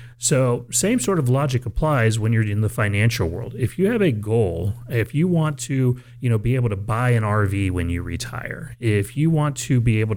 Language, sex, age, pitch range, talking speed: English, male, 30-49, 105-130 Hz, 225 wpm